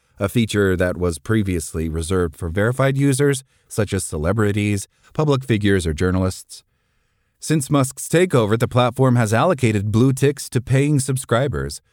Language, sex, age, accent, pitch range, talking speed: English, male, 40-59, American, 95-130 Hz, 140 wpm